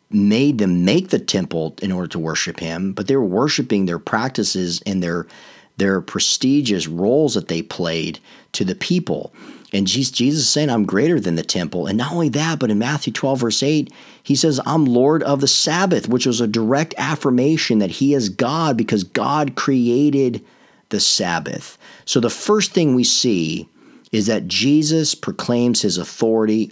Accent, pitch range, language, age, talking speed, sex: American, 90-140 Hz, English, 40-59, 175 wpm, male